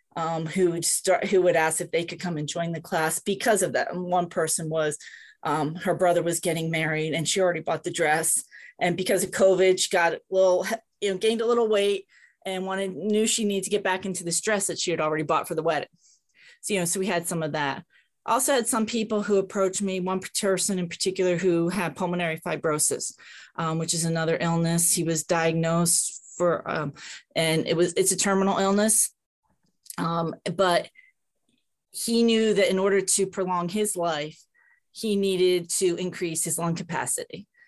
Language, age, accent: English, 30-49, American